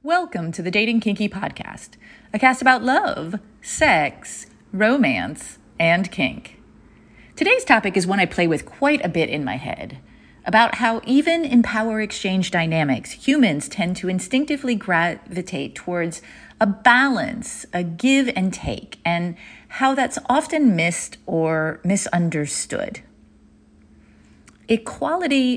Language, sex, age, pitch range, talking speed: English, female, 30-49, 170-245 Hz, 125 wpm